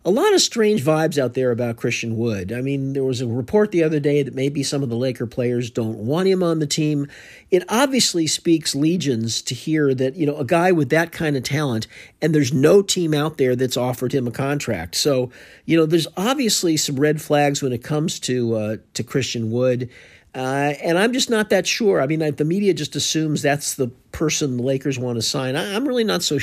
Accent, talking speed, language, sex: American, 230 wpm, English, male